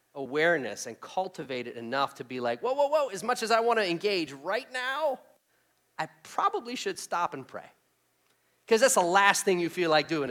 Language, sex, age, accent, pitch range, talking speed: English, male, 40-59, American, 165-240 Hz, 205 wpm